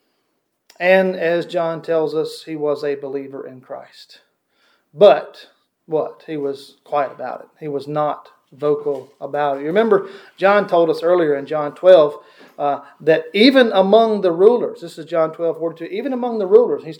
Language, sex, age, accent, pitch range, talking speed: English, male, 40-59, American, 150-205 Hz, 175 wpm